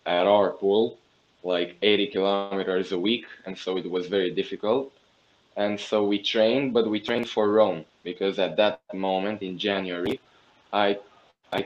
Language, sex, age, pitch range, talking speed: English, male, 10-29, 95-105 Hz, 160 wpm